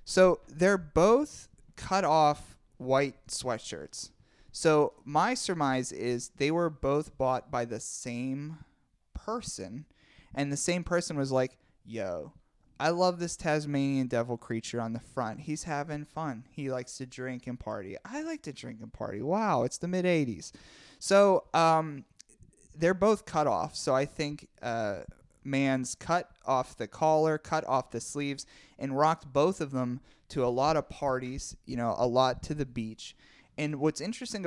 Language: English